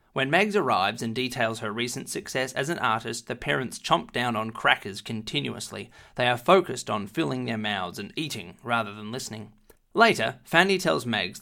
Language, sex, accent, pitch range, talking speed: English, male, Australian, 110-130 Hz, 180 wpm